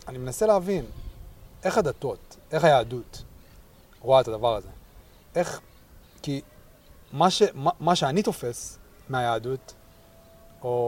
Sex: male